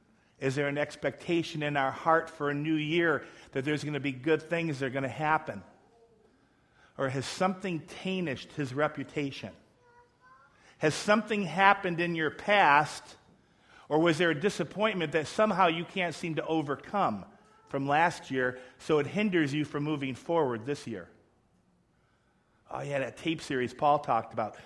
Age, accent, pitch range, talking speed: 50-69, American, 125-170 Hz, 165 wpm